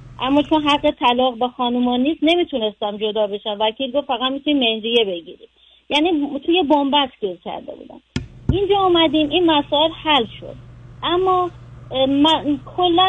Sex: female